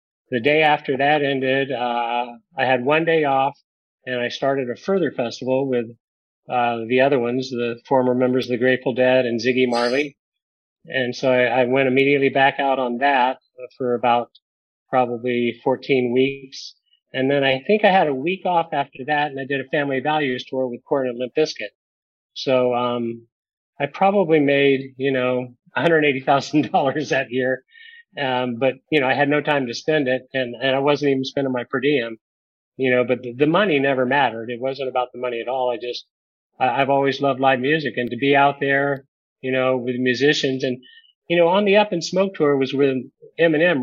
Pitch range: 125-145 Hz